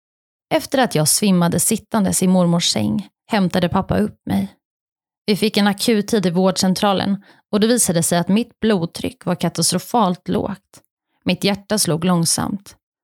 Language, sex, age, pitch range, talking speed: Swedish, female, 30-49, 180-225 Hz, 150 wpm